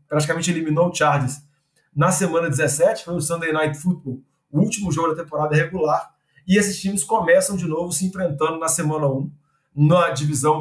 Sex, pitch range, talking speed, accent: male, 145-170 Hz, 175 wpm, Brazilian